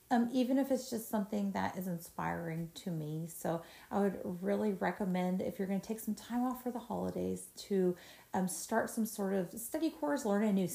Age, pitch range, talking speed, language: 30-49, 185-250 Hz, 210 wpm, English